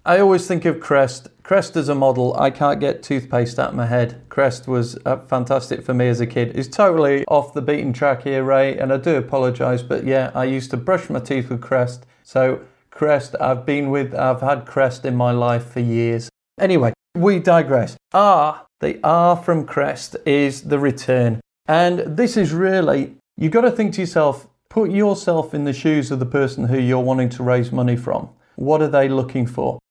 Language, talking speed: English, 205 wpm